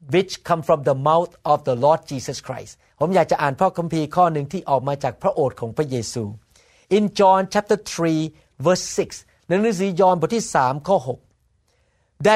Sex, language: male, Thai